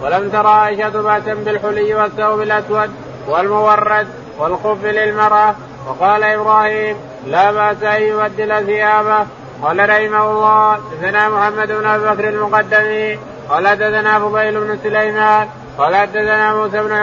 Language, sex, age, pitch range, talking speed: Arabic, male, 20-39, 210-215 Hz, 115 wpm